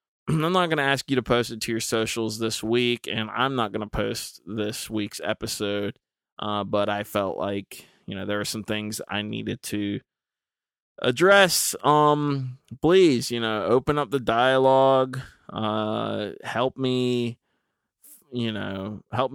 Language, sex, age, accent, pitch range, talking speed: English, male, 20-39, American, 105-125 Hz, 160 wpm